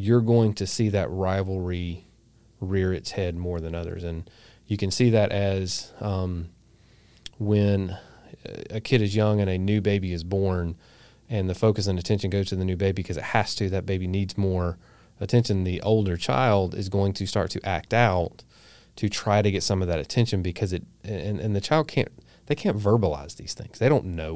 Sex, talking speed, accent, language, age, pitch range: male, 200 wpm, American, English, 30-49, 95-115 Hz